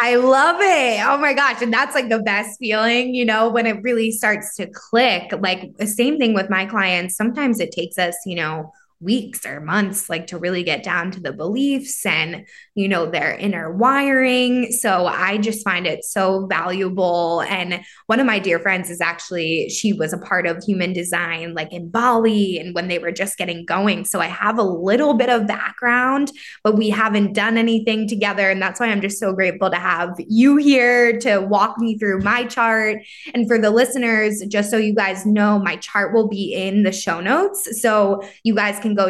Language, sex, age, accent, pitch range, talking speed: English, female, 20-39, American, 185-230 Hz, 205 wpm